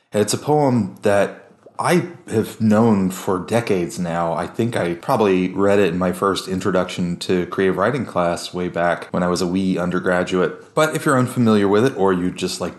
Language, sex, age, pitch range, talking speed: English, male, 30-49, 90-105 Hz, 195 wpm